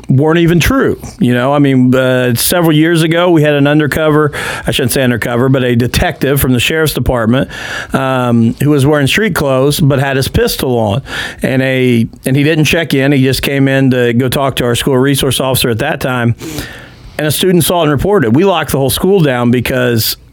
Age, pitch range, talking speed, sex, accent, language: 40-59, 125-155 Hz, 205 wpm, male, American, English